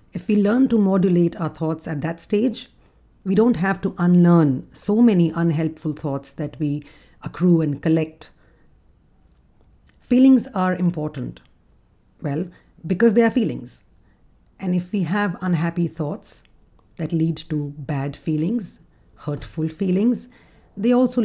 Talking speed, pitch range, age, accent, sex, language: 135 wpm, 160-195 Hz, 50-69, Indian, female, English